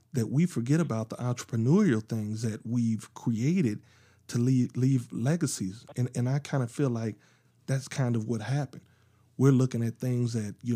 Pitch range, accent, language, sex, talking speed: 110-130 Hz, American, English, male, 180 wpm